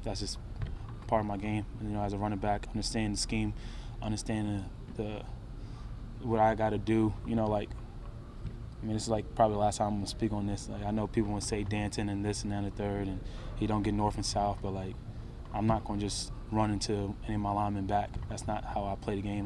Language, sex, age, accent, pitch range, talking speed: English, male, 20-39, American, 100-110 Hz, 245 wpm